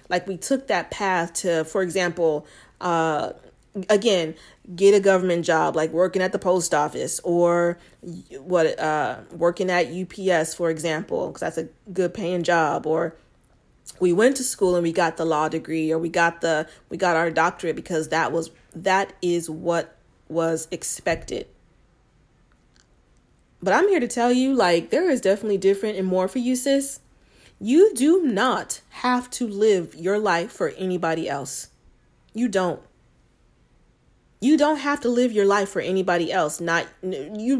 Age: 30-49